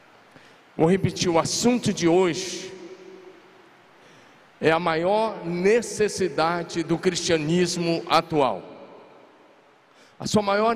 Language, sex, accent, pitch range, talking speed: Portuguese, male, Brazilian, 170-205 Hz, 90 wpm